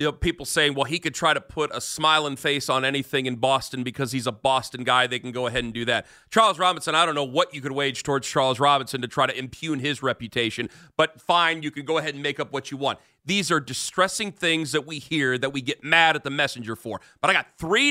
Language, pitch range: English, 140-195 Hz